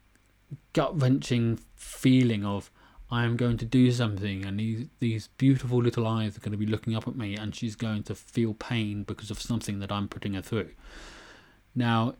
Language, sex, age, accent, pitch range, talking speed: English, male, 30-49, British, 105-125 Hz, 185 wpm